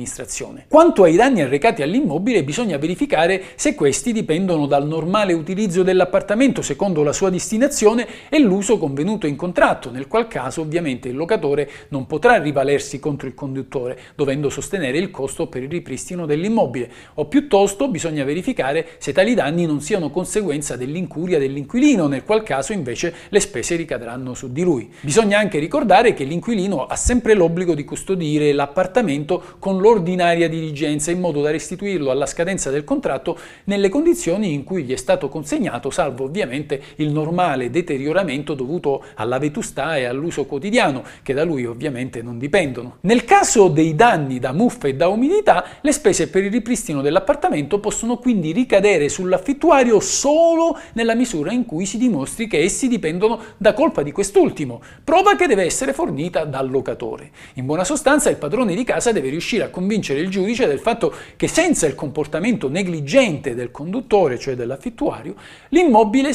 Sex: male